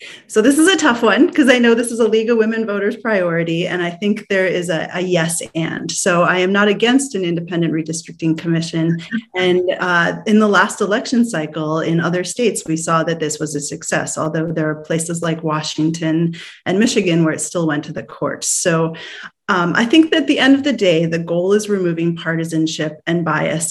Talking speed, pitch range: 215 wpm, 160-190 Hz